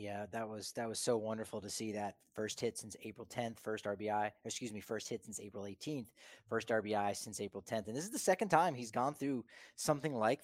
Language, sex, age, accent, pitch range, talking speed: English, male, 30-49, American, 110-135 Hz, 235 wpm